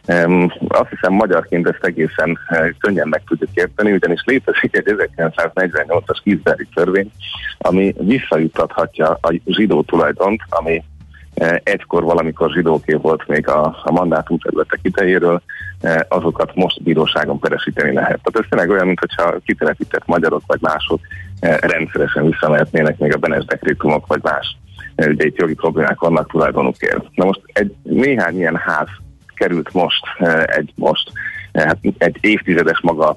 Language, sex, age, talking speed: Hungarian, male, 30-49, 145 wpm